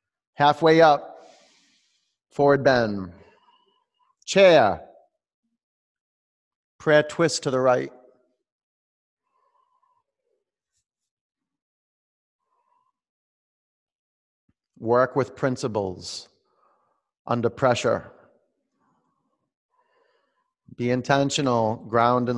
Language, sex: English, male